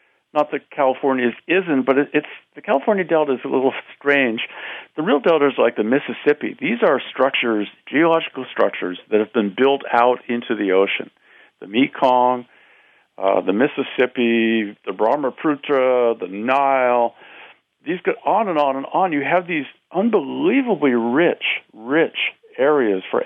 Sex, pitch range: male, 120-165 Hz